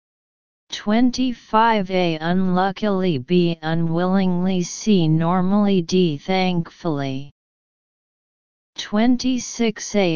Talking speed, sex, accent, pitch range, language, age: 65 wpm, female, American, 170-200 Hz, English, 40-59